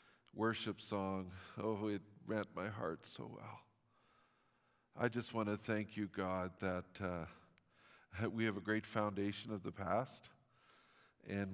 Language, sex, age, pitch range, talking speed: English, male, 50-69, 100-115 Hz, 140 wpm